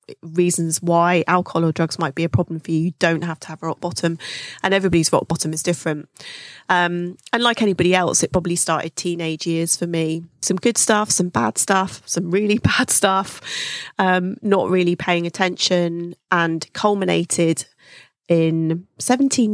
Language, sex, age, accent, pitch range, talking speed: English, female, 30-49, British, 165-190 Hz, 170 wpm